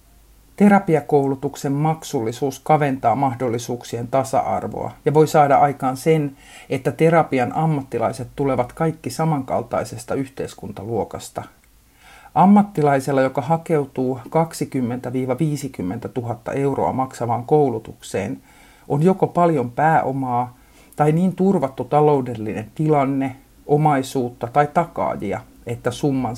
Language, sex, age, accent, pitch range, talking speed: Finnish, male, 50-69, native, 125-155 Hz, 90 wpm